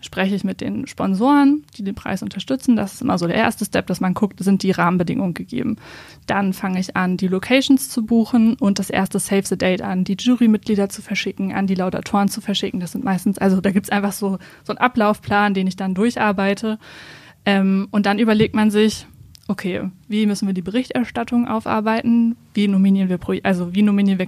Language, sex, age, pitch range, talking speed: German, female, 20-39, 190-225 Hz, 200 wpm